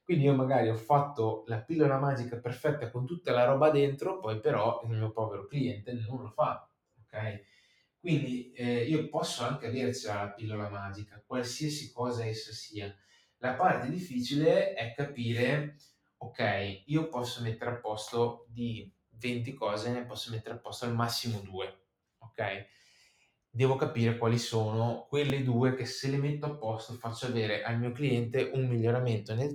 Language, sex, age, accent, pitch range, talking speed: Italian, male, 20-39, native, 110-130 Hz, 160 wpm